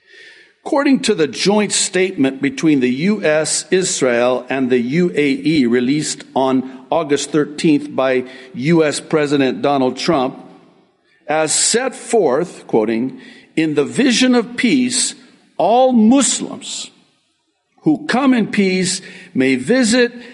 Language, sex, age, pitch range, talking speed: English, male, 60-79, 135-220 Hz, 110 wpm